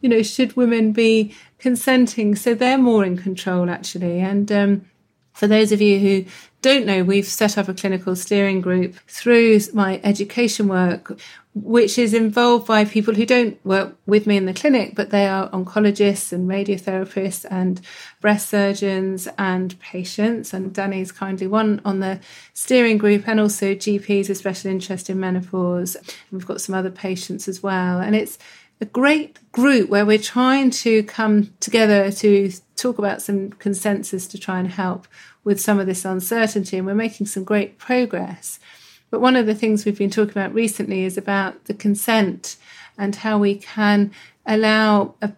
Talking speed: 170 wpm